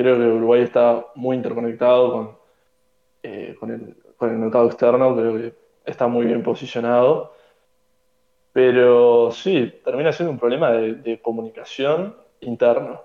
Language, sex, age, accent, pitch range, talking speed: Spanish, male, 20-39, Argentinian, 115-130 Hz, 140 wpm